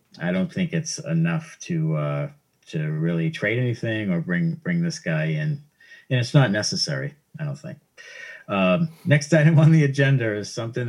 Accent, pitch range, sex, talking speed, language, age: American, 110-165 Hz, male, 175 wpm, English, 50-69